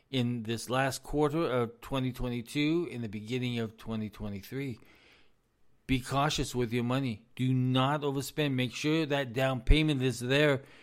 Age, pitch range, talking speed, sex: 50-69, 105-130 Hz, 145 wpm, male